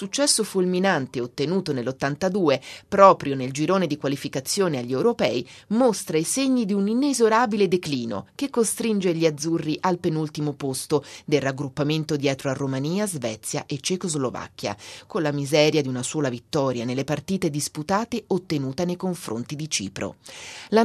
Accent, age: native, 30-49